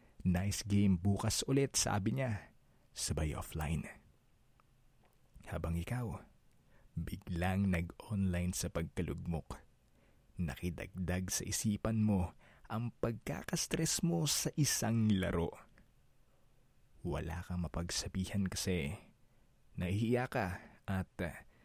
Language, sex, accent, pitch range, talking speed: Filipino, male, native, 90-110 Hz, 85 wpm